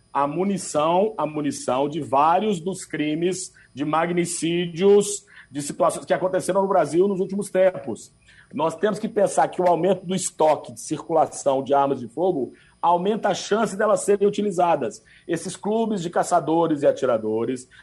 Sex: male